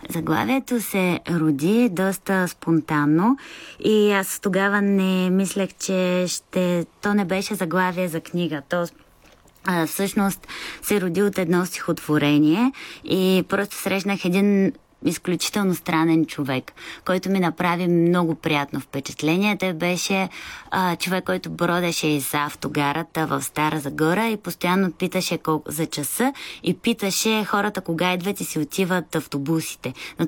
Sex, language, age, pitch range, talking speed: female, Bulgarian, 20-39, 160-195 Hz, 125 wpm